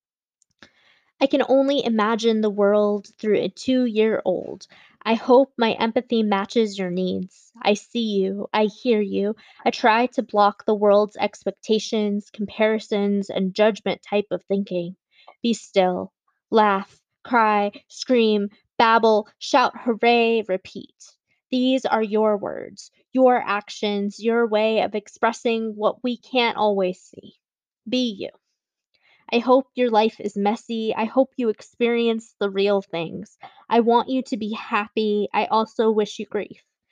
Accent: American